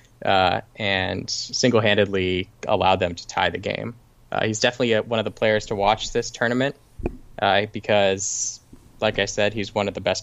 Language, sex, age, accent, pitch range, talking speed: English, male, 10-29, American, 110-125 Hz, 180 wpm